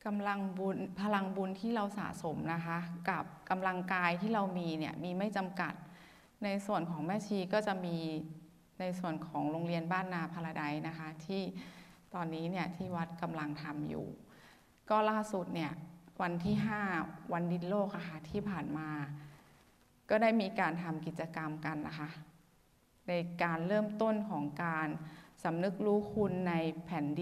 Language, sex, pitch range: Thai, female, 165-200 Hz